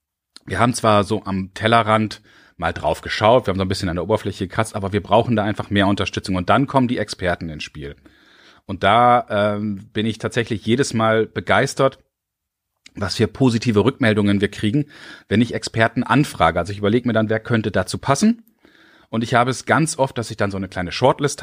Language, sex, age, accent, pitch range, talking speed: German, male, 30-49, German, 100-125 Hz, 205 wpm